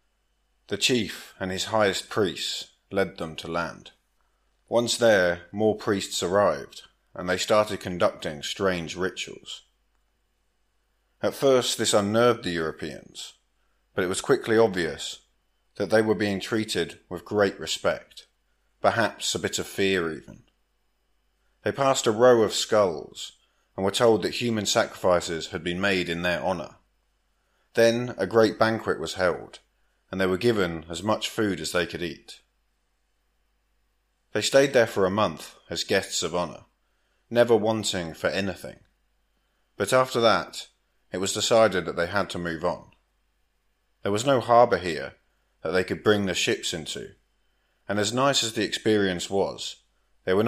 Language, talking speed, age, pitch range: English, 150 wpm, 30-49, 90-115 Hz